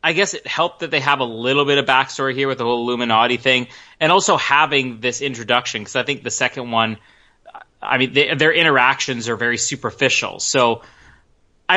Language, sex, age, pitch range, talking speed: English, male, 30-49, 120-145 Hz, 195 wpm